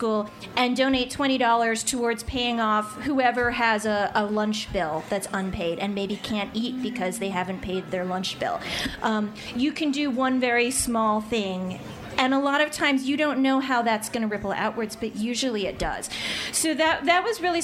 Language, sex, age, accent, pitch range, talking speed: English, female, 30-49, American, 210-255 Hz, 190 wpm